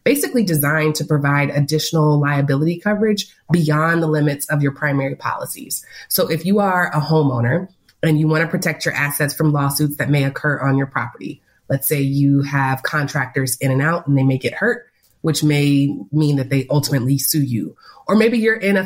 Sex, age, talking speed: female, 30-49, 195 wpm